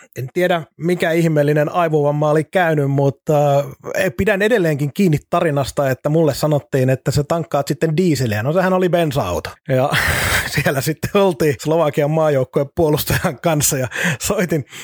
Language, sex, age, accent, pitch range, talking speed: Finnish, male, 30-49, native, 145-170 Hz, 140 wpm